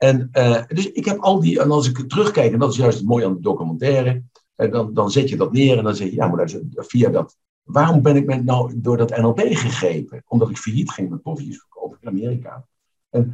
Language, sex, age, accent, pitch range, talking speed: Dutch, male, 60-79, Dutch, 105-140 Hz, 245 wpm